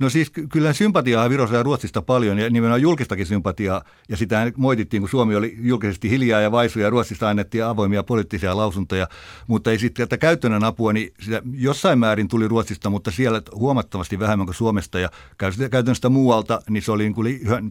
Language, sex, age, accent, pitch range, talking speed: Finnish, male, 60-79, native, 100-125 Hz, 185 wpm